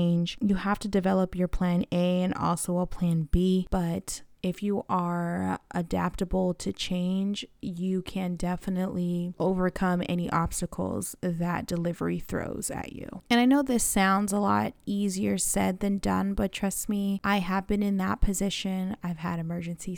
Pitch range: 180-215 Hz